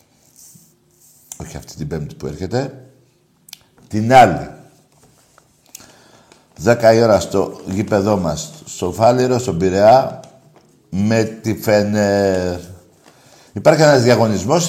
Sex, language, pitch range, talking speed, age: male, Greek, 95-130 Hz, 100 wpm, 60-79